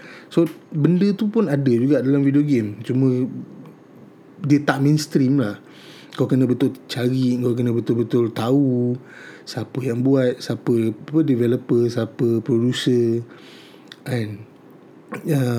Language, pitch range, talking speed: Malay, 120-150 Hz, 120 wpm